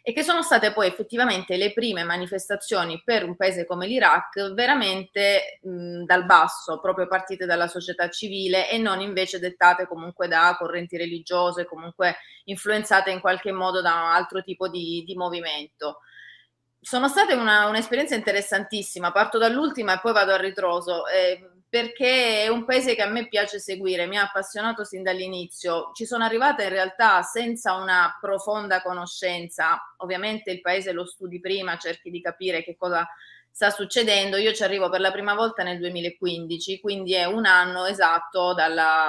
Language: Italian